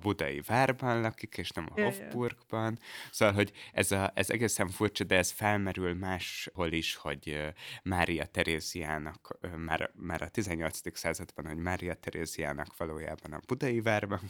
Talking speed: 140 wpm